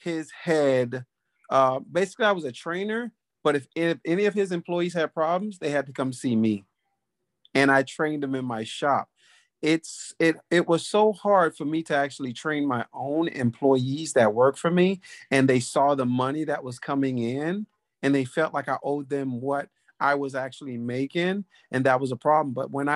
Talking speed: 200 wpm